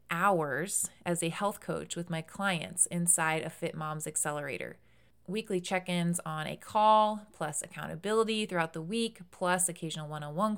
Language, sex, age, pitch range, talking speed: English, female, 30-49, 165-195 Hz, 145 wpm